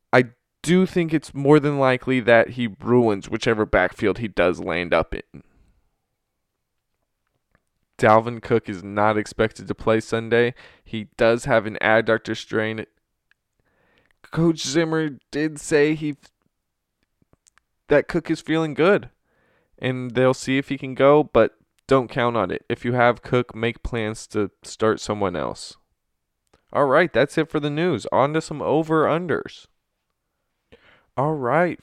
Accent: American